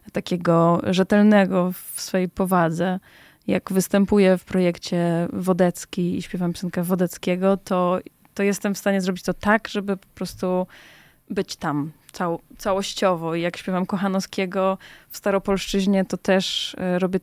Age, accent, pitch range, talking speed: 20-39, native, 180-205 Hz, 130 wpm